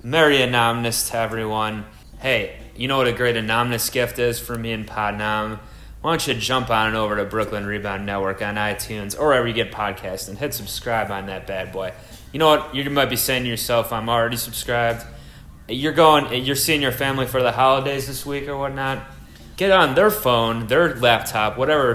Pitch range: 100-120 Hz